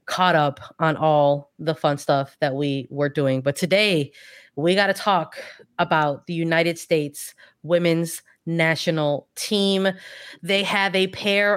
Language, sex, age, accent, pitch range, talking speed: English, female, 20-39, American, 165-205 Hz, 145 wpm